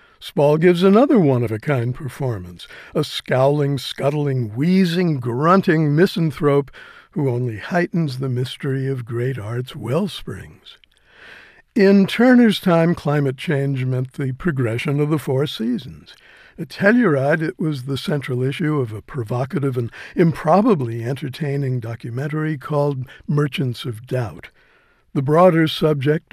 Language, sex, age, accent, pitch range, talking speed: English, male, 60-79, American, 130-160 Hz, 120 wpm